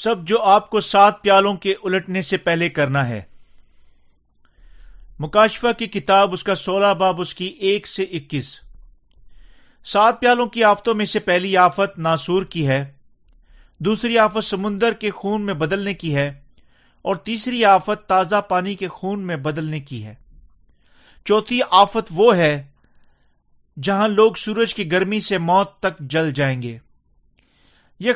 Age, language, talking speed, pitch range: 40-59, Urdu, 150 wpm, 145-210 Hz